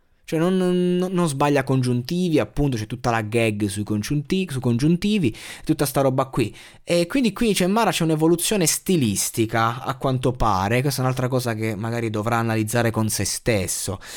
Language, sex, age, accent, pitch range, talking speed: Italian, male, 20-39, native, 115-145 Hz, 165 wpm